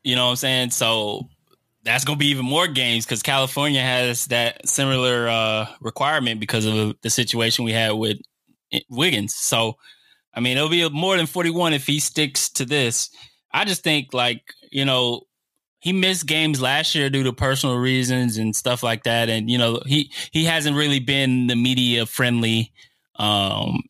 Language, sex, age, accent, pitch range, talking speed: English, male, 20-39, American, 115-140 Hz, 180 wpm